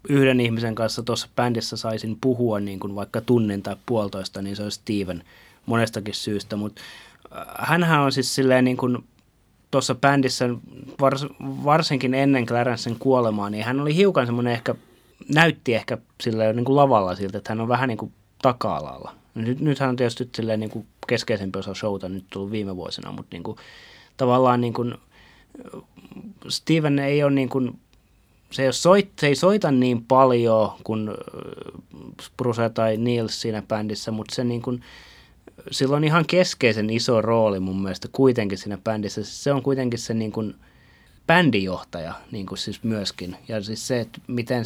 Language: Finnish